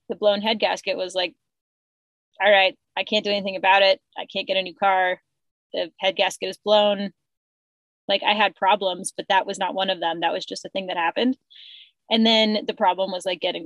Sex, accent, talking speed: female, American, 220 wpm